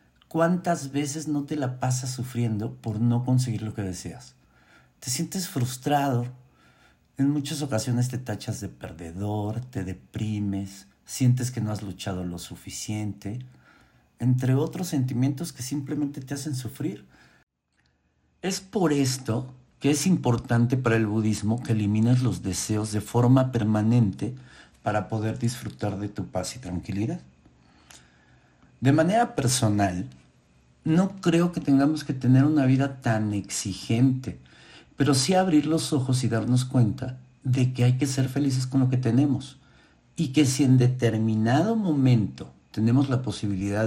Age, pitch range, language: 50-69, 105-140 Hz, Spanish